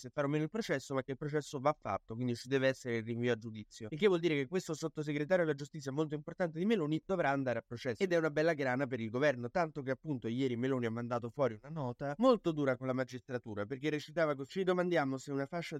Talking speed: 250 wpm